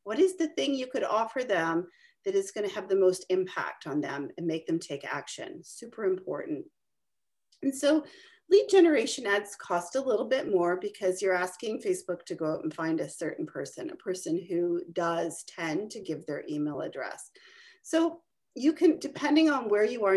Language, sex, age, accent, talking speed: English, female, 40-59, American, 190 wpm